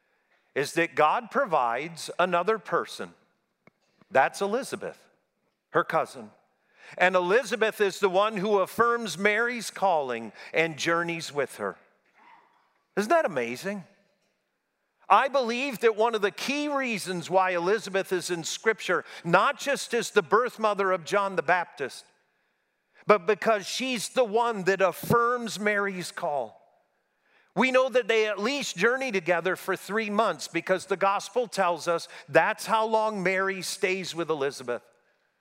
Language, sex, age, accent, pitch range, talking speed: English, male, 50-69, American, 180-235 Hz, 135 wpm